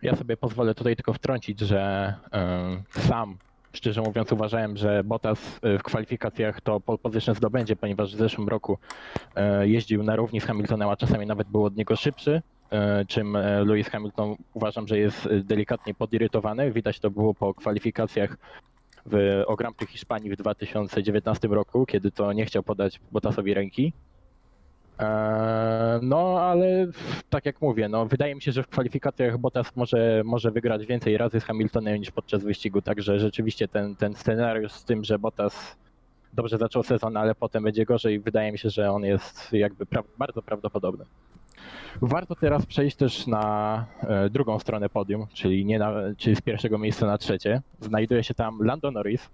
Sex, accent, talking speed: male, native, 160 wpm